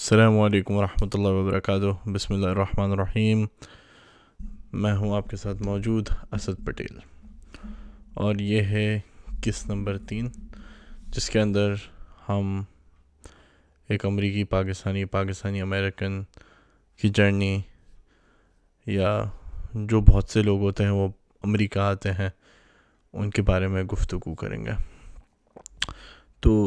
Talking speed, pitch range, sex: 120 wpm, 95-105 Hz, male